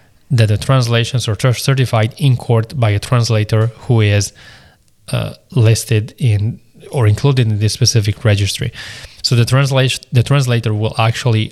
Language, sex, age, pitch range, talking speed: English, male, 20-39, 110-130 Hz, 145 wpm